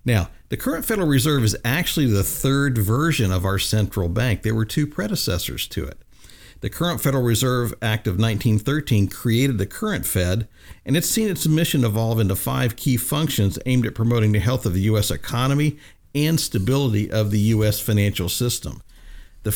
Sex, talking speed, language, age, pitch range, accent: male, 180 wpm, English, 50-69, 105-130 Hz, American